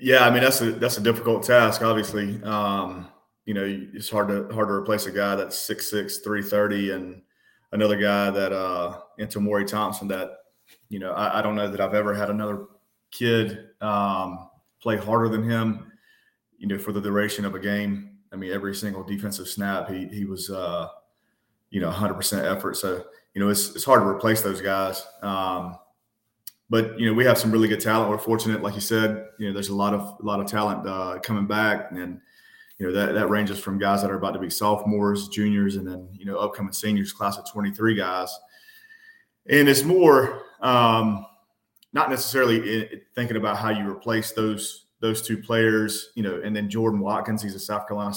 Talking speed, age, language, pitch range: 200 wpm, 30-49, English, 100-110 Hz